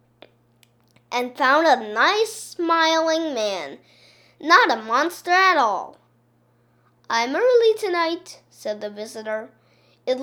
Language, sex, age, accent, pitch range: Chinese, female, 10-29, American, 225-325 Hz